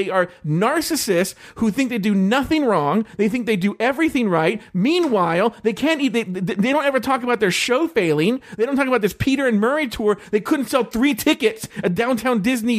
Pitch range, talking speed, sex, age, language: 195-280 Hz, 210 wpm, male, 40-59, English